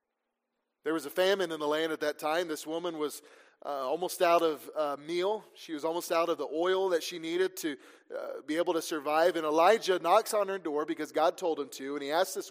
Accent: American